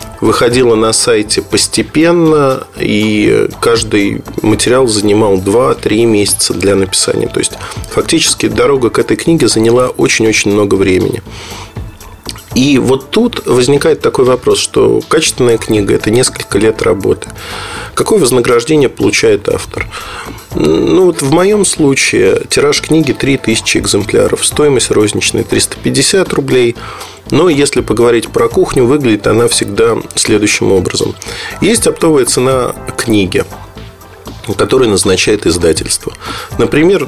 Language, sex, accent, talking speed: Russian, male, native, 120 wpm